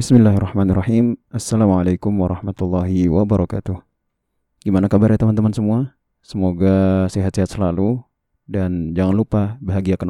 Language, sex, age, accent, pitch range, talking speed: Indonesian, male, 20-39, native, 95-120 Hz, 95 wpm